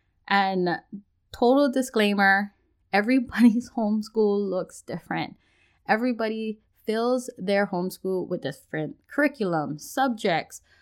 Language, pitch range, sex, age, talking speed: English, 185-245 Hz, female, 20-39, 85 wpm